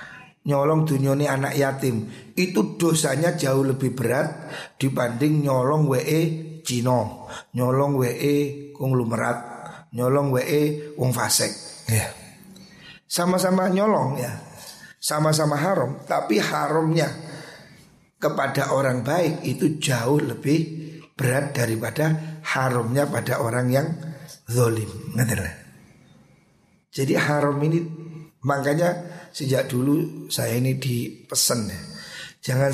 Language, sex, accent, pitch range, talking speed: Indonesian, male, native, 125-155 Hz, 95 wpm